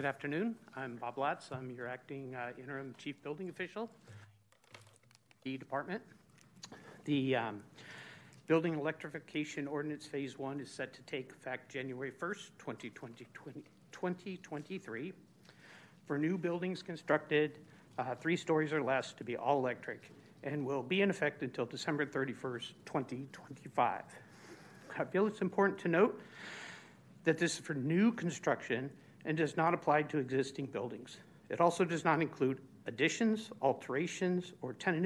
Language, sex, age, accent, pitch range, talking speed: English, male, 60-79, American, 135-175 Hz, 140 wpm